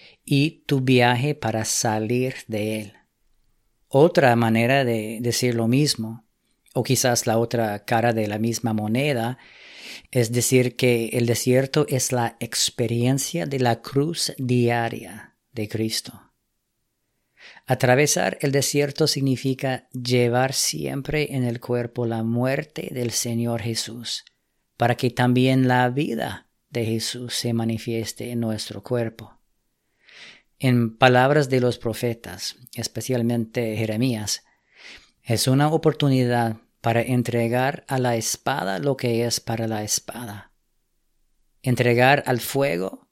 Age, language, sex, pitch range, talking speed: 40-59, English, female, 115-130 Hz, 120 wpm